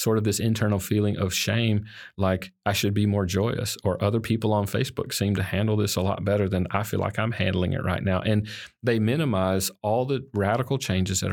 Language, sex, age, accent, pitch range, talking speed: English, male, 40-59, American, 95-115 Hz, 225 wpm